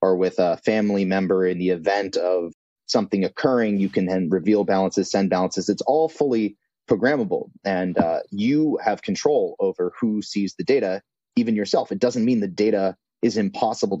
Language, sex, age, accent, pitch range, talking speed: English, male, 30-49, American, 95-160 Hz, 175 wpm